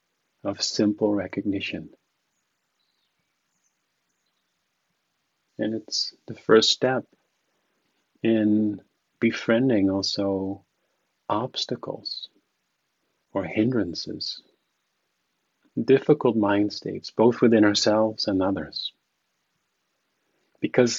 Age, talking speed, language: 40-59, 65 wpm, English